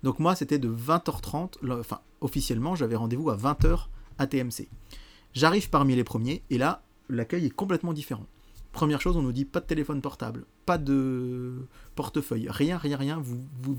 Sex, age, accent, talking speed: male, 30-49, French, 175 wpm